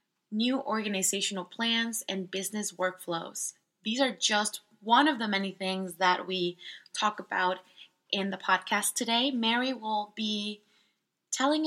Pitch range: 190-225 Hz